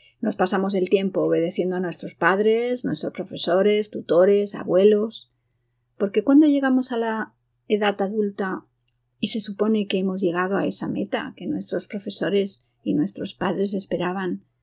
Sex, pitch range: female, 165-205 Hz